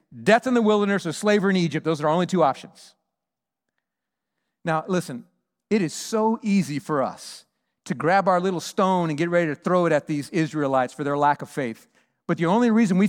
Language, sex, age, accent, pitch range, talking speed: English, male, 40-59, American, 165-210 Hz, 210 wpm